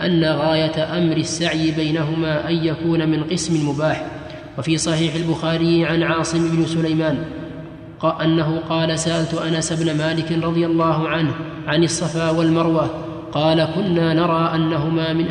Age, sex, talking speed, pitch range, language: 20-39, male, 135 wpm, 160-165 Hz, Arabic